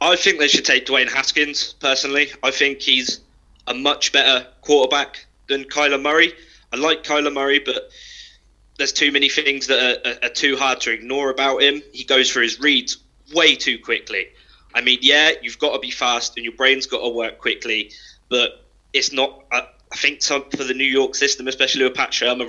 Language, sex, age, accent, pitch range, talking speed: English, male, 20-39, British, 120-150 Hz, 205 wpm